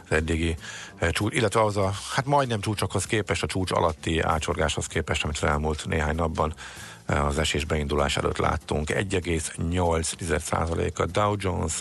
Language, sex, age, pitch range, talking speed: Hungarian, male, 50-69, 80-95 Hz, 140 wpm